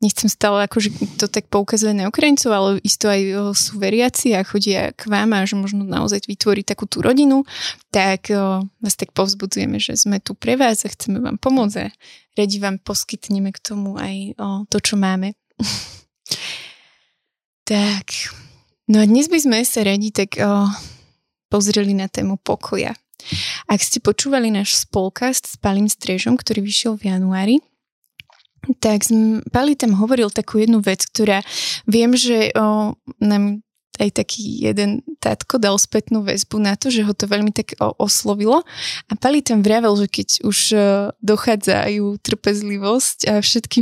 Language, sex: Slovak, female